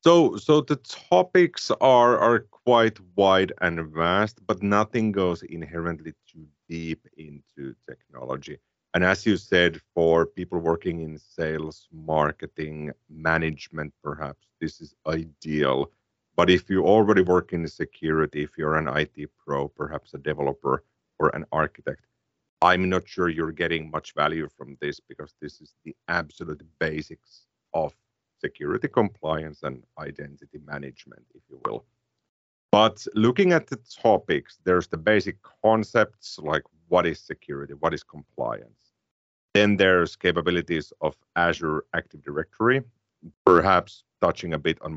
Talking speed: 135 wpm